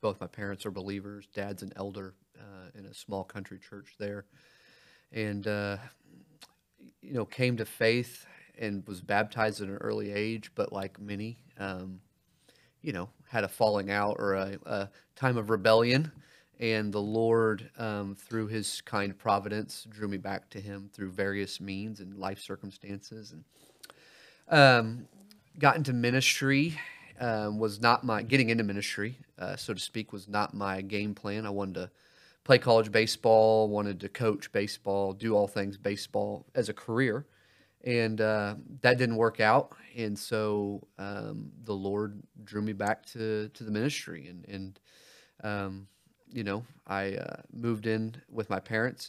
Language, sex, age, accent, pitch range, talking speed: English, male, 30-49, American, 100-115 Hz, 160 wpm